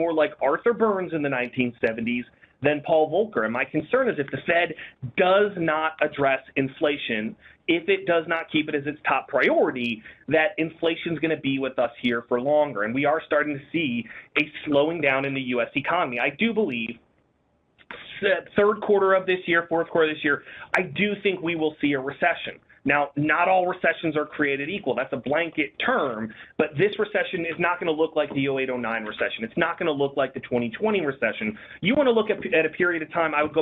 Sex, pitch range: male, 140-175 Hz